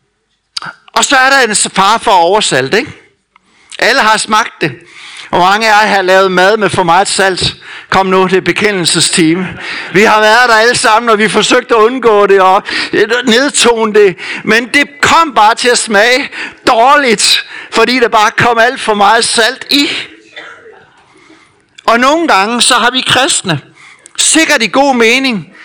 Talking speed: 170 wpm